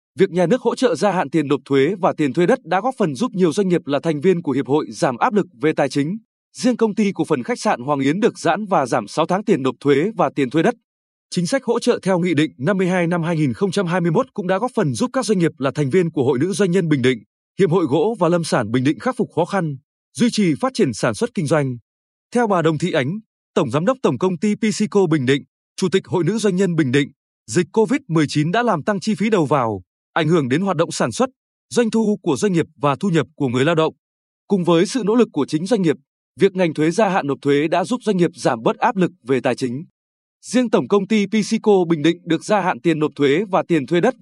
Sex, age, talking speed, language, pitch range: male, 20-39, 265 wpm, Vietnamese, 150-210 Hz